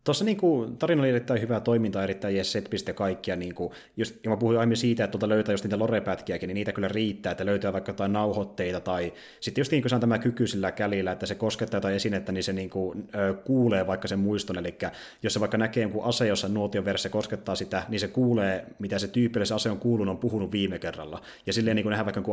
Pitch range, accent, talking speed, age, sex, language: 95-110 Hz, native, 225 wpm, 30-49, male, Finnish